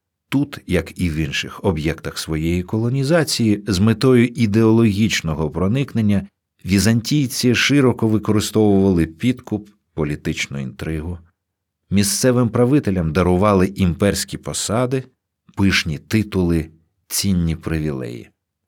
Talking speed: 85 wpm